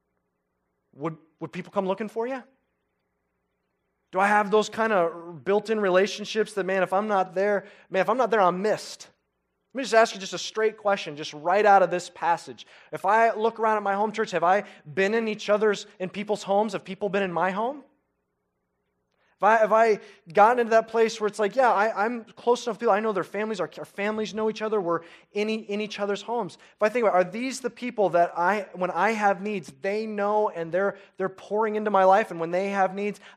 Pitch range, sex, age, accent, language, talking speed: 170-215 Hz, male, 20-39, American, English, 235 wpm